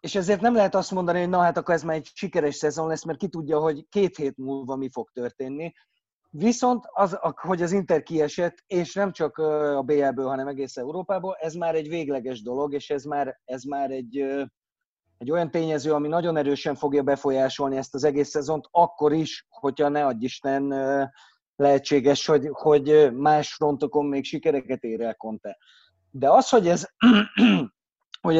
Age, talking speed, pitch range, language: 30-49, 180 wpm, 135-165 Hz, Hungarian